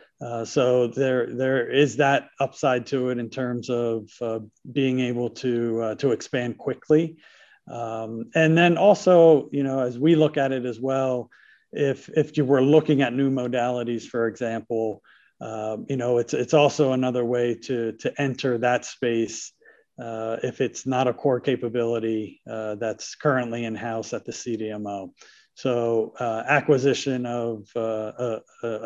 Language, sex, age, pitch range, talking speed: English, male, 50-69, 115-135 Hz, 160 wpm